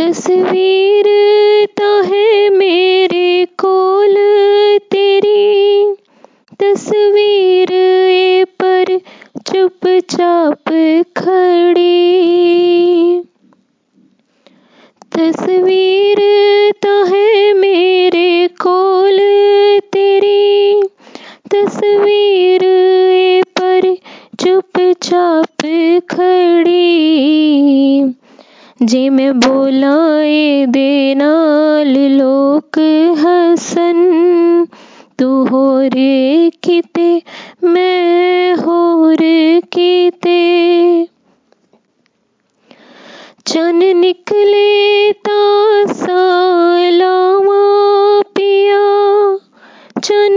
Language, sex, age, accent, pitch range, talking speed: Hindi, female, 20-39, native, 335-395 Hz, 45 wpm